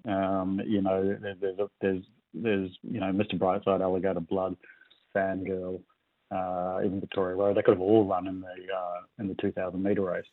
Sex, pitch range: male, 95-100 Hz